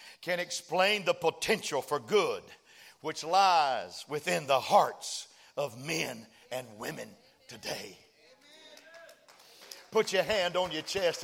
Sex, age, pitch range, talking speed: male, 50-69, 205-325 Hz, 115 wpm